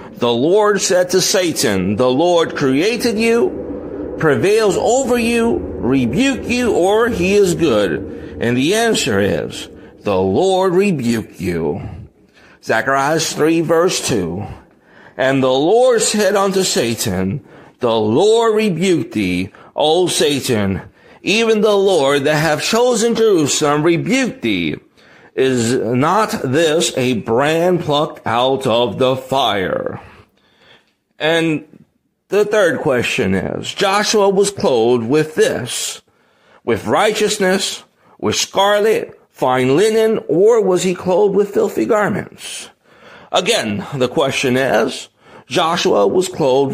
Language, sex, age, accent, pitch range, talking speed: English, male, 50-69, American, 135-210 Hz, 115 wpm